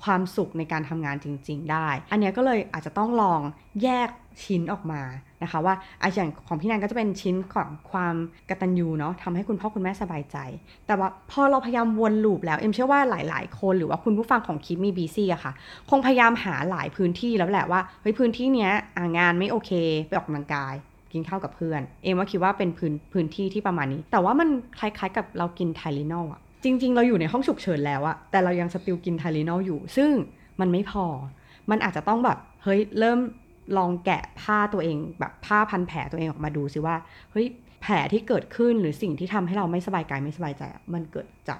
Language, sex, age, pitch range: Thai, female, 20-39, 160-210 Hz